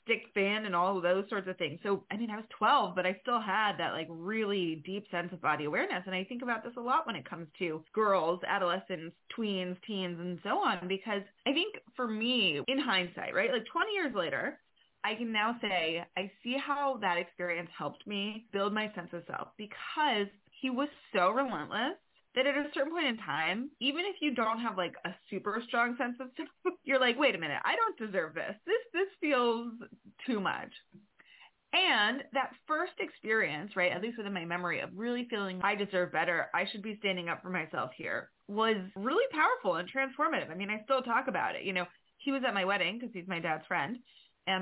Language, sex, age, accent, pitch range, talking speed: English, female, 20-39, American, 185-260 Hz, 215 wpm